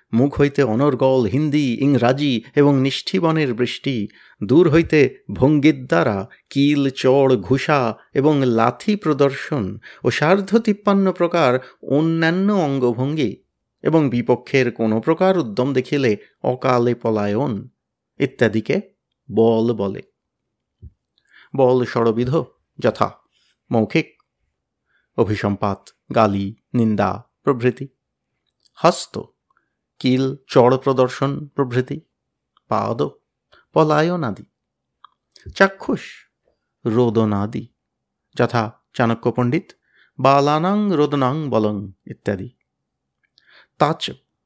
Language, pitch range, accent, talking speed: Bengali, 115-150 Hz, native, 75 wpm